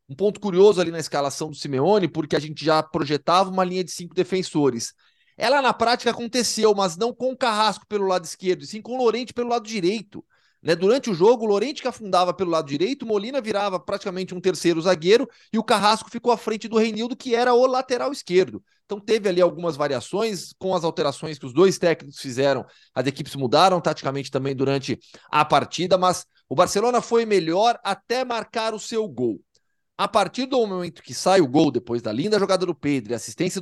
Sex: male